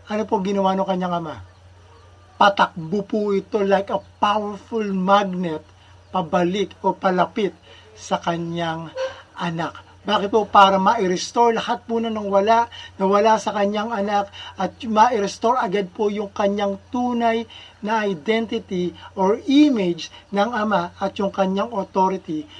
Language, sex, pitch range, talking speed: Filipino, male, 180-230 Hz, 140 wpm